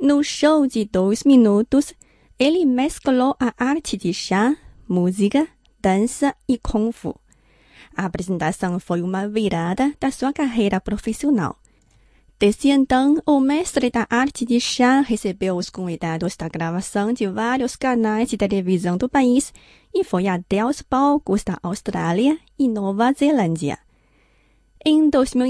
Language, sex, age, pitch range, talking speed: Portuguese, female, 30-49, 190-275 Hz, 130 wpm